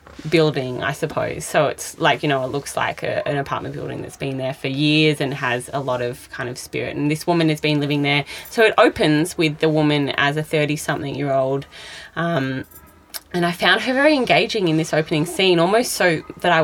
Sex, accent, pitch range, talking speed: female, Australian, 140-165 Hz, 220 wpm